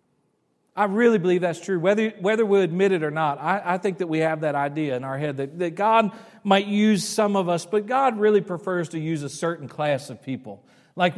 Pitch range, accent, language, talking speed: 150-180 Hz, American, English, 230 wpm